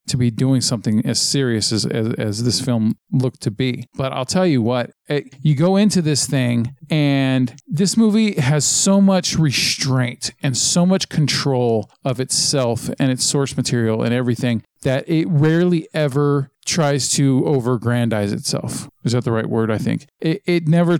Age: 40-59